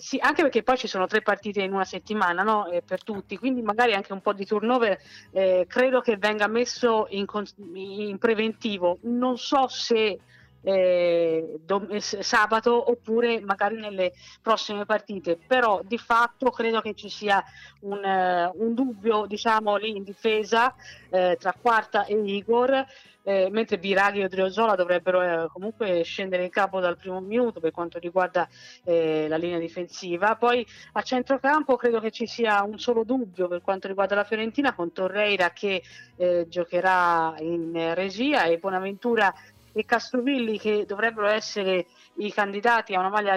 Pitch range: 185-230 Hz